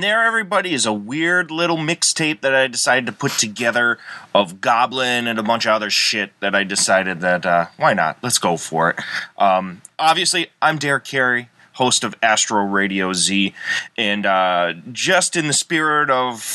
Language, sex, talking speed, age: English, male, 180 wpm, 20-39